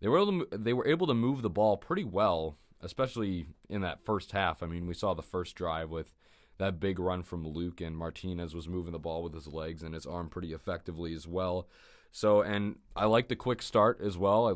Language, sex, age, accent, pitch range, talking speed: English, male, 20-39, American, 85-105 Hz, 225 wpm